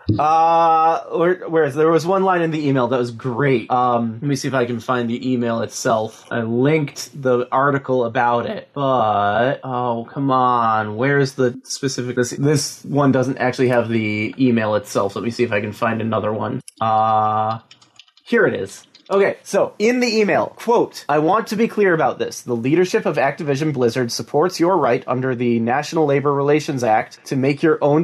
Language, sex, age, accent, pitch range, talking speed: English, male, 20-39, American, 125-165 Hz, 195 wpm